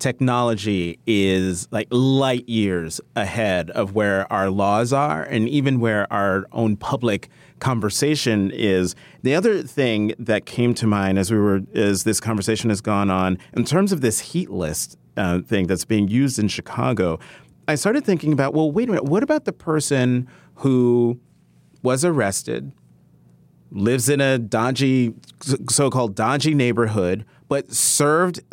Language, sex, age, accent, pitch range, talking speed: English, male, 30-49, American, 110-160 Hz, 150 wpm